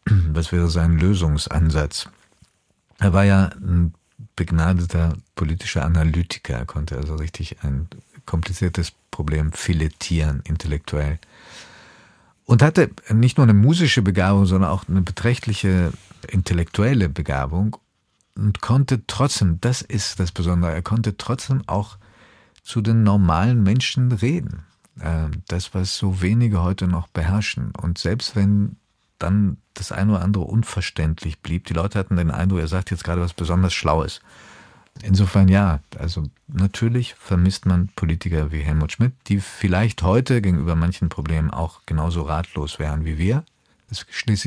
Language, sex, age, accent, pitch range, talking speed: German, male, 50-69, German, 80-105 Hz, 140 wpm